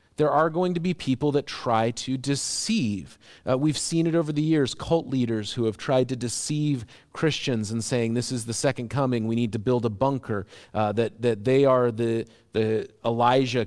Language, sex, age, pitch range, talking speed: English, male, 40-59, 110-140 Hz, 200 wpm